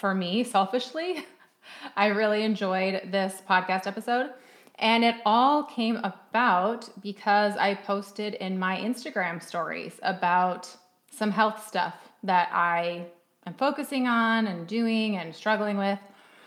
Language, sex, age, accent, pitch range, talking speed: English, female, 30-49, American, 190-235 Hz, 130 wpm